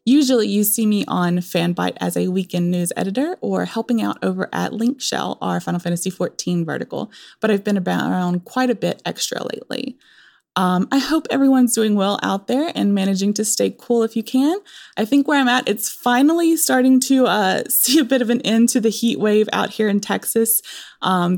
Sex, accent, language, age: female, American, English, 20-39